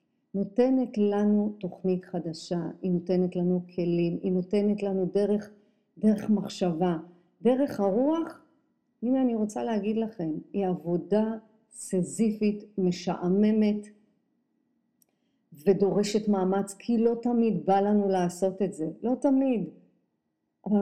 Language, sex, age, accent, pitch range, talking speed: Hebrew, female, 50-69, native, 185-240 Hz, 110 wpm